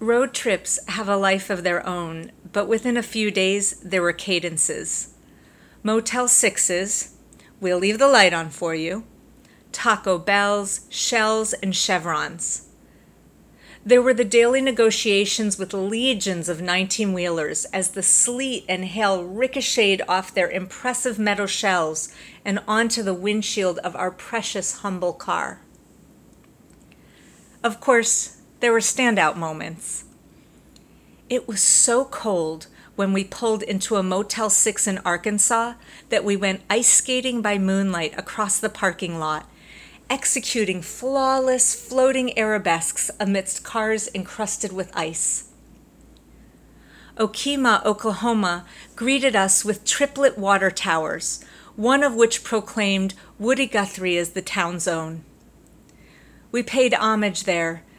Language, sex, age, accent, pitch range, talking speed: English, female, 40-59, American, 185-230 Hz, 125 wpm